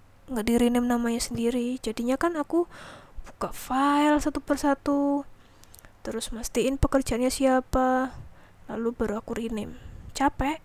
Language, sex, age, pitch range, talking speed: Indonesian, female, 20-39, 240-275 Hz, 105 wpm